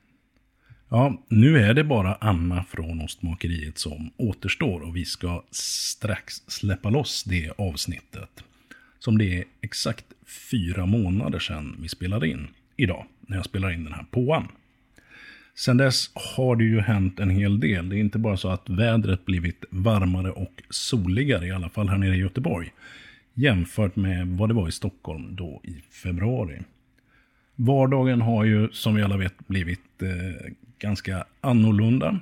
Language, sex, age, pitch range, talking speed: Swedish, male, 50-69, 90-115 Hz, 155 wpm